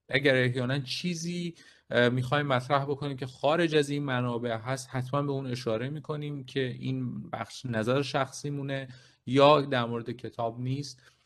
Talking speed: 145 wpm